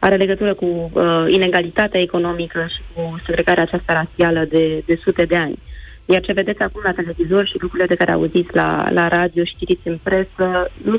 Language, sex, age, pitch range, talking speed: Romanian, female, 20-39, 165-185 Hz, 185 wpm